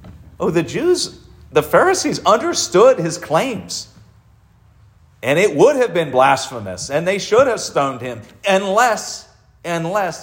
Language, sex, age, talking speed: English, male, 50-69, 130 wpm